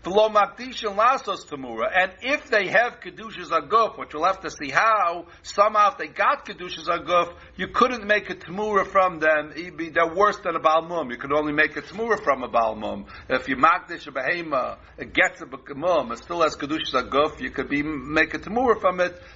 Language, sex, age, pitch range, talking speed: English, male, 60-79, 160-210 Hz, 200 wpm